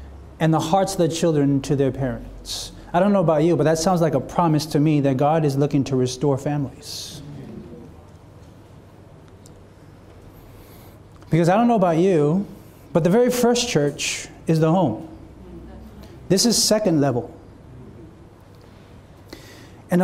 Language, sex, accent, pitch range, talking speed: English, male, American, 130-190 Hz, 145 wpm